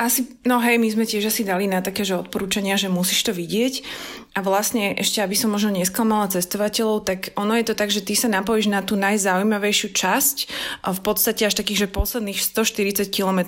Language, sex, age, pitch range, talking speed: Slovak, female, 20-39, 185-215 Hz, 205 wpm